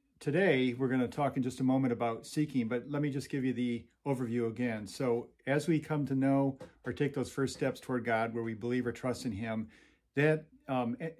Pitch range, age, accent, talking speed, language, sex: 115-135 Hz, 50-69, American, 225 wpm, English, male